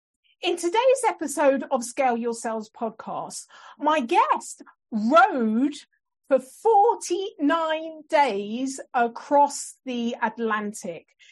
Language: English